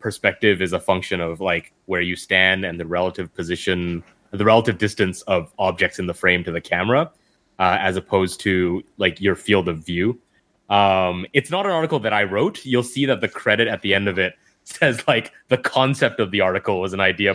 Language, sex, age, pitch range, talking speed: English, male, 20-39, 95-130 Hz, 210 wpm